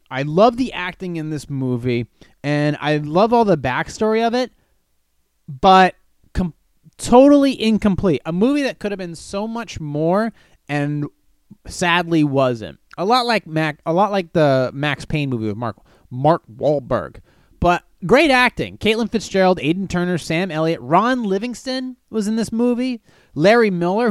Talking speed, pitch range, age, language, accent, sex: 155 wpm, 135-215 Hz, 30-49, English, American, male